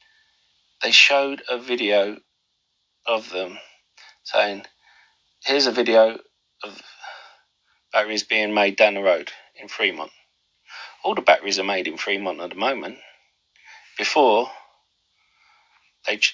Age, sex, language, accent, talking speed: 40-59, male, English, British, 115 wpm